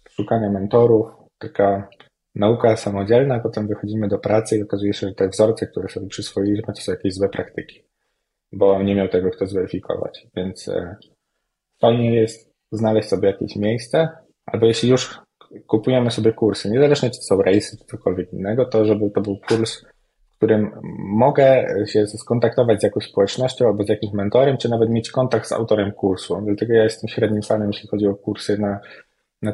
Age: 20-39